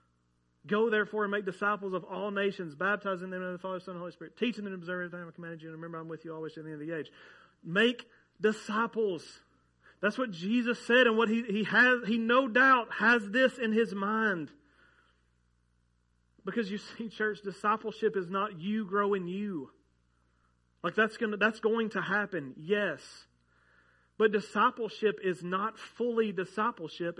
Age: 40-59